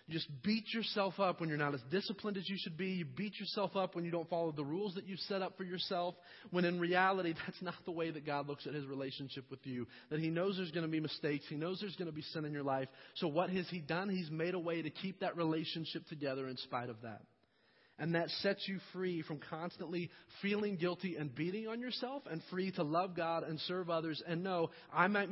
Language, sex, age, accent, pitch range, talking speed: English, male, 30-49, American, 155-185 Hz, 250 wpm